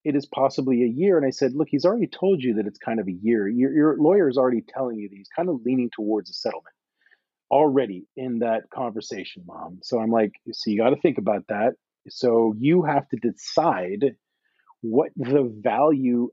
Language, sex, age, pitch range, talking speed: English, male, 40-59, 115-155 Hz, 210 wpm